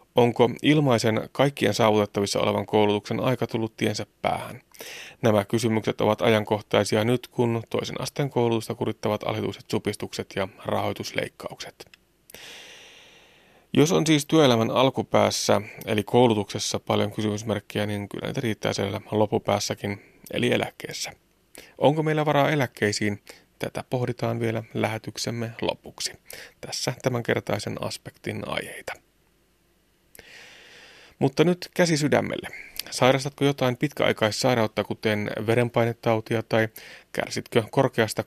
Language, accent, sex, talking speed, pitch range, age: Finnish, native, male, 105 wpm, 105-125 Hz, 30-49